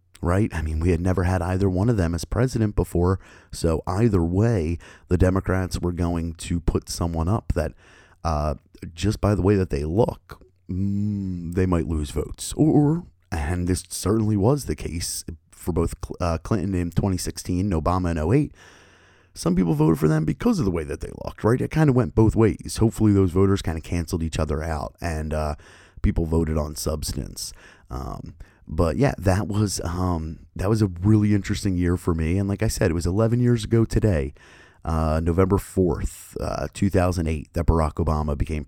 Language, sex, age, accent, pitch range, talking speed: English, male, 30-49, American, 80-100 Hz, 190 wpm